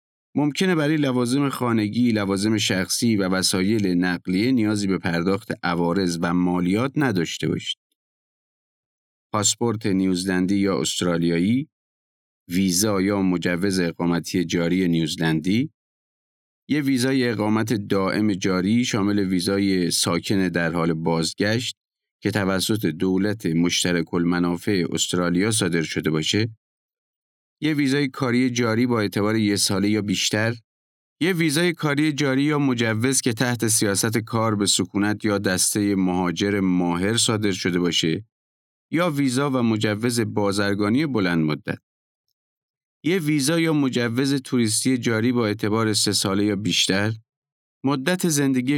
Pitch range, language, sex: 90-125 Hz, Persian, male